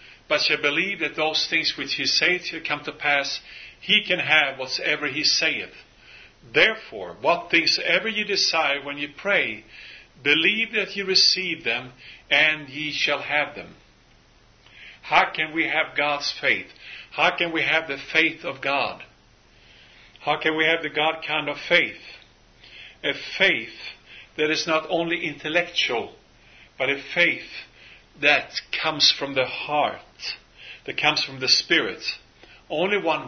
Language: English